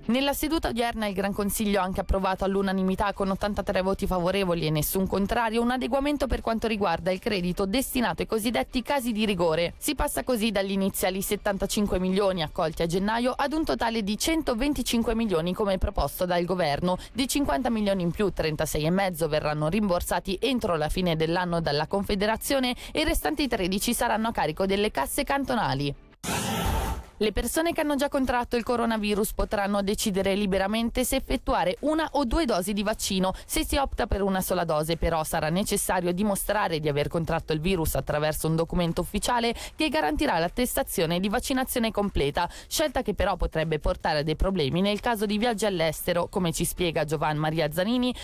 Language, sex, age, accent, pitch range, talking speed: Italian, female, 20-39, native, 175-240 Hz, 170 wpm